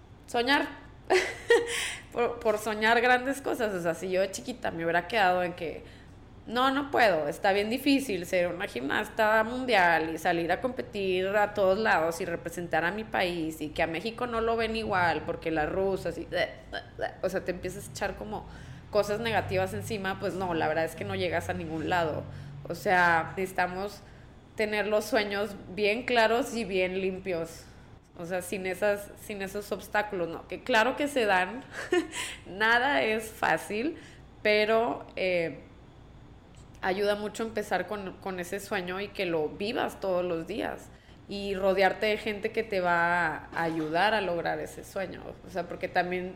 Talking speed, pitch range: 170 wpm, 170-215 Hz